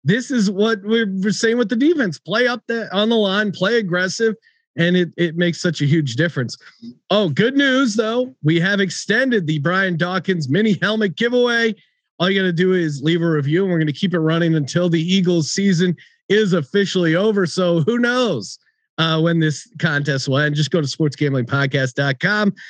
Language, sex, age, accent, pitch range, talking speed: English, male, 40-59, American, 145-195 Hz, 195 wpm